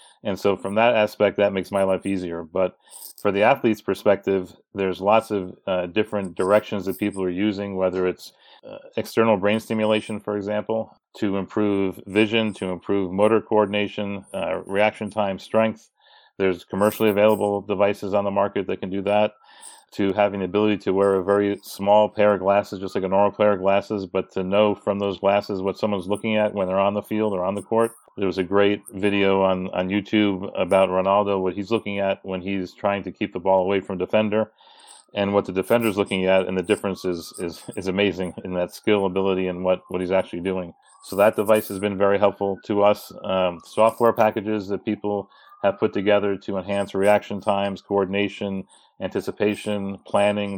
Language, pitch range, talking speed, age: English, 95-105 Hz, 195 wpm, 40-59